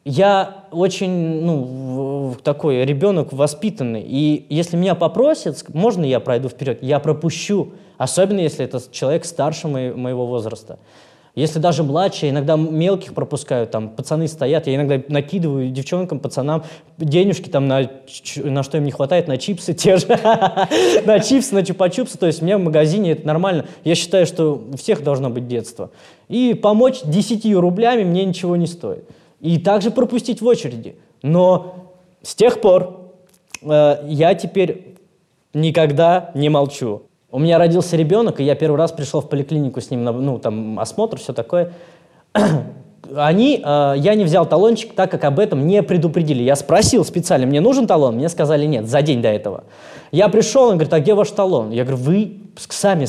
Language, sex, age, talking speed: Russian, male, 20-39, 170 wpm